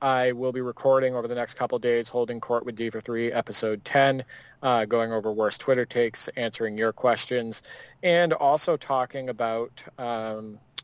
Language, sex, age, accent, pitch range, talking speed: English, male, 30-49, American, 115-130 Hz, 175 wpm